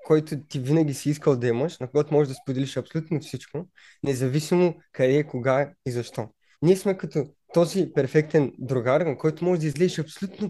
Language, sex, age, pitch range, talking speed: Bulgarian, male, 20-39, 130-160 Hz, 175 wpm